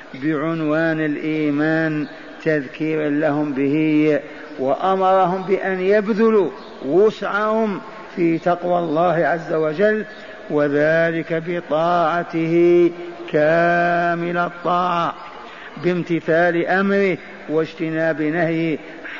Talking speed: 70 wpm